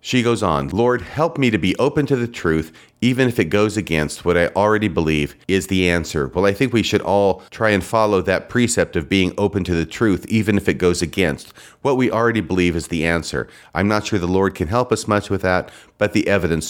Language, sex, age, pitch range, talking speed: English, male, 40-59, 85-120 Hz, 240 wpm